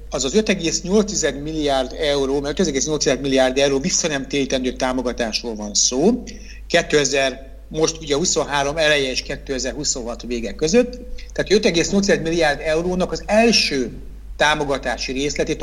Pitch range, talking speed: 135-170 Hz, 120 wpm